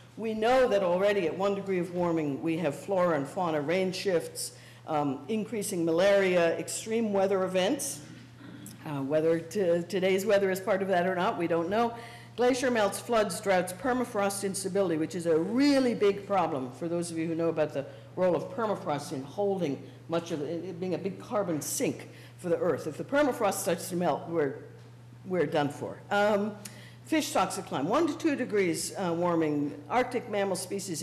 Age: 60-79